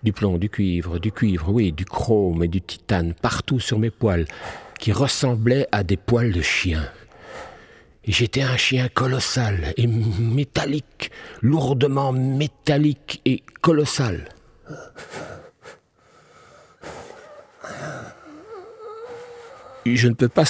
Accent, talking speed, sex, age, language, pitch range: French, 115 wpm, male, 50-69, French, 90-130 Hz